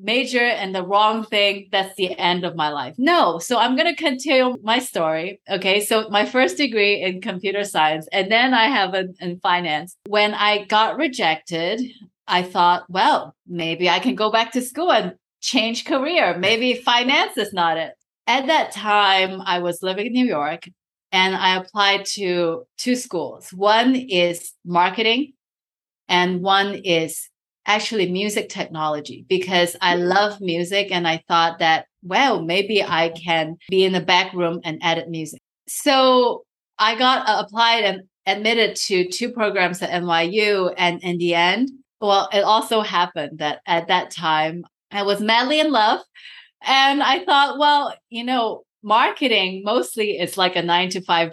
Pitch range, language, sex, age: 175-220 Hz, English, female, 30-49